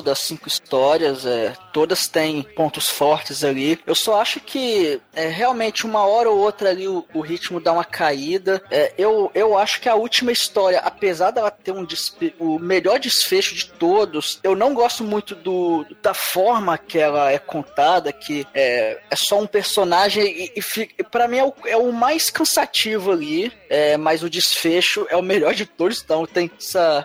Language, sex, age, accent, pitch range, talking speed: Portuguese, male, 20-39, Brazilian, 155-230 Hz, 190 wpm